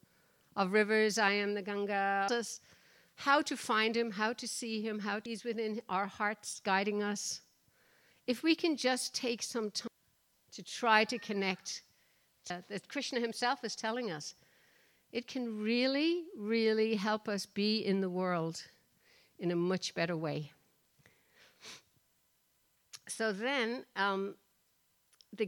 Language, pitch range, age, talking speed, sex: English, 190-235 Hz, 60-79, 135 wpm, female